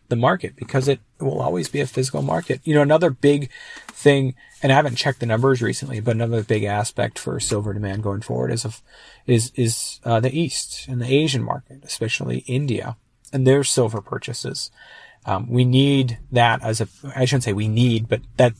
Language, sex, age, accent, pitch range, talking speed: English, male, 40-59, American, 115-140 Hz, 195 wpm